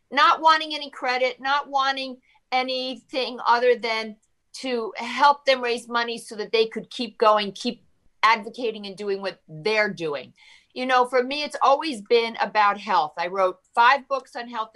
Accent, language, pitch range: American, English, 215-275 Hz